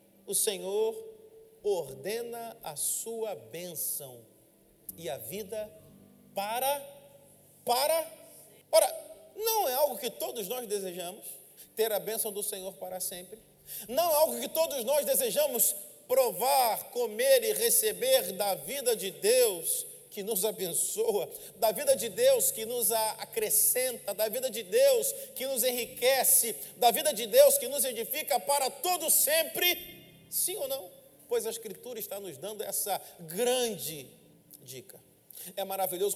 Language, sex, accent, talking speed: Portuguese, male, Brazilian, 135 wpm